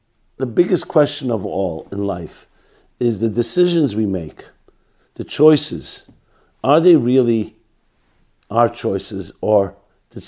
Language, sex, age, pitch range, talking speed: English, male, 50-69, 105-130 Hz, 125 wpm